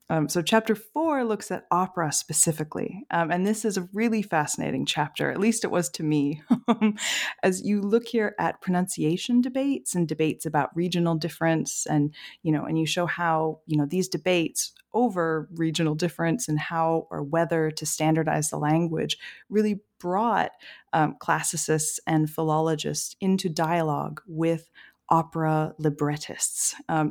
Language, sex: English, female